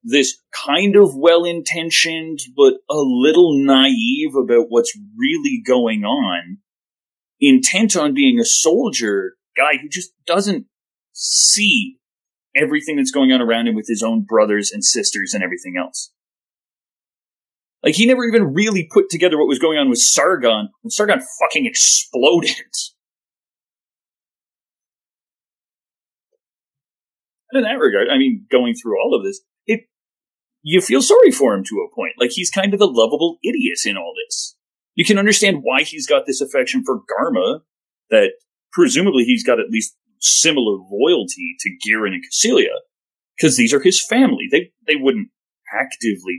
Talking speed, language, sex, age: 150 wpm, English, male, 30-49